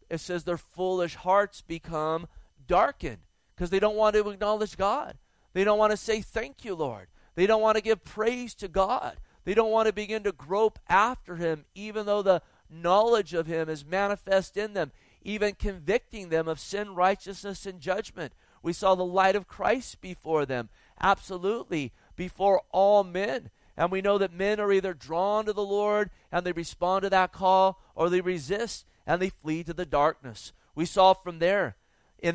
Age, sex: 40-59, male